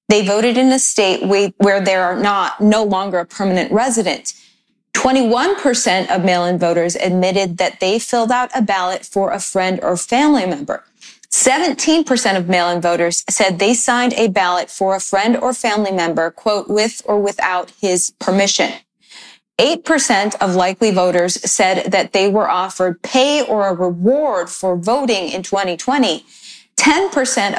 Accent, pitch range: American, 185-240 Hz